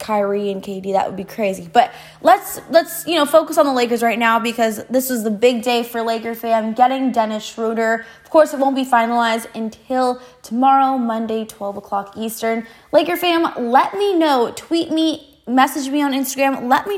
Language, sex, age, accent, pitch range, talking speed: English, female, 20-39, American, 225-280 Hz, 195 wpm